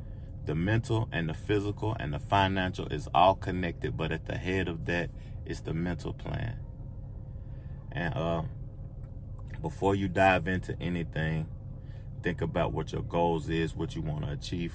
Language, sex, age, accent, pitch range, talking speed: English, male, 30-49, American, 85-115 Hz, 160 wpm